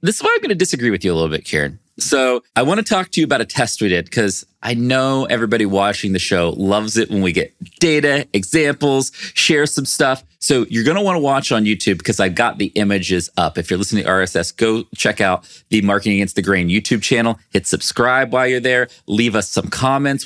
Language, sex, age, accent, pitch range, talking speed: English, male, 30-49, American, 100-135 Hz, 240 wpm